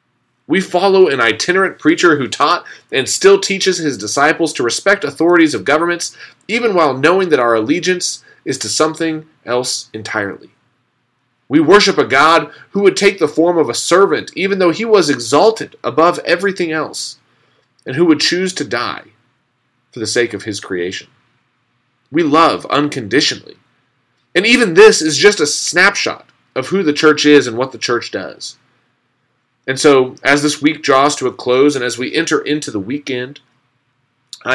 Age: 30-49